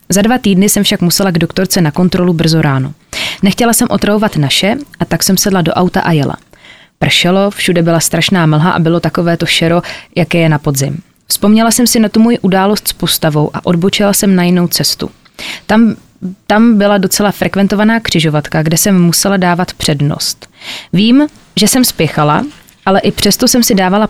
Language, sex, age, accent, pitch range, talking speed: Czech, female, 20-39, native, 170-205 Hz, 185 wpm